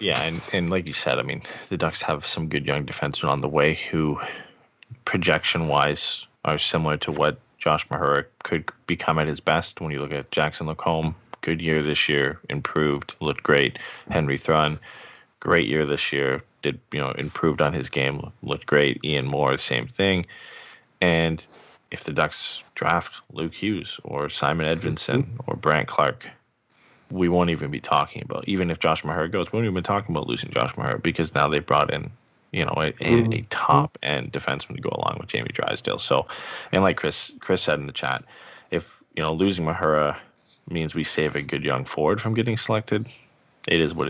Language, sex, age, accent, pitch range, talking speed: English, male, 20-39, American, 75-105 Hz, 190 wpm